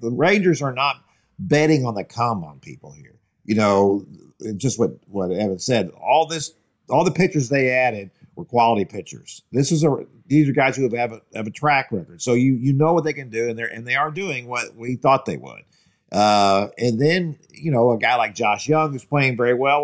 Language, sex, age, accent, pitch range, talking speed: English, male, 50-69, American, 115-155 Hz, 225 wpm